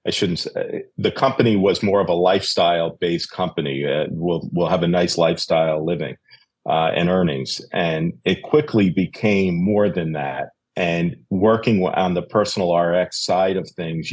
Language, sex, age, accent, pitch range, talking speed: English, male, 50-69, American, 85-105 Hz, 160 wpm